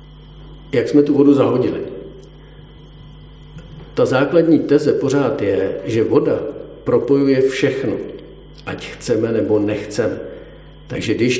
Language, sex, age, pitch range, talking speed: Czech, male, 50-69, 120-160 Hz, 105 wpm